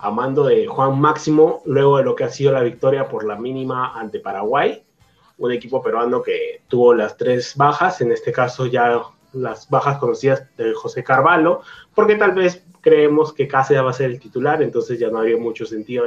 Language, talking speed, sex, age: Spanish, 200 wpm, male, 20-39